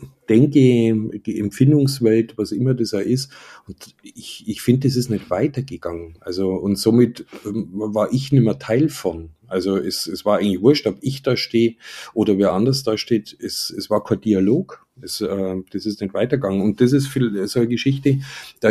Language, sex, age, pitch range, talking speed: German, male, 50-69, 100-125 Hz, 190 wpm